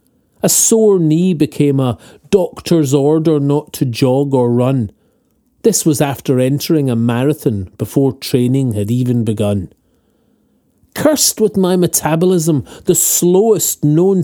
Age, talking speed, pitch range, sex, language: 40-59, 125 wpm, 125-170 Hz, male, English